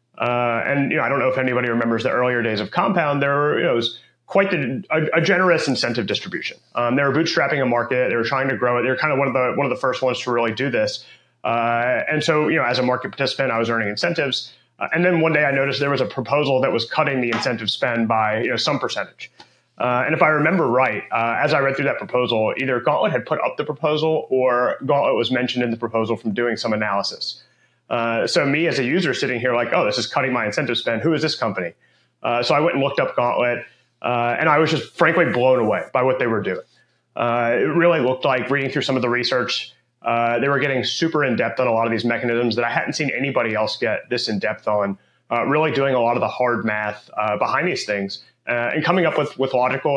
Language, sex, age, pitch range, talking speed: English, male, 30-49, 115-140 Hz, 260 wpm